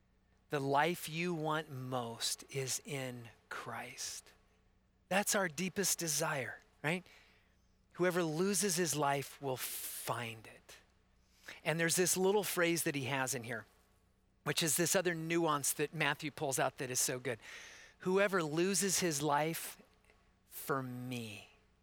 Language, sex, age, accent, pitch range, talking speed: English, male, 40-59, American, 140-180 Hz, 135 wpm